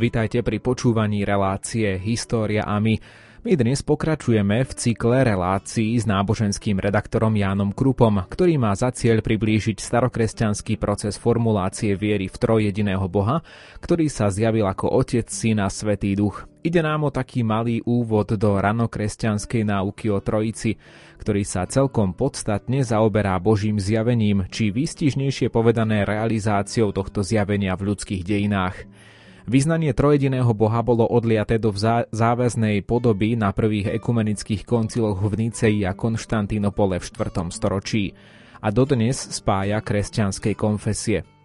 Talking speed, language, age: 135 wpm, Slovak, 30-49